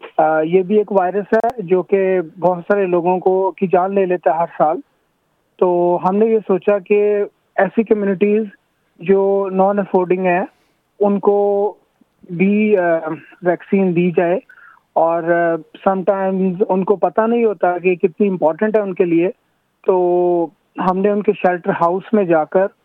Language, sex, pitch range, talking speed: Urdu, male, 175-195 Hz, 160 wpm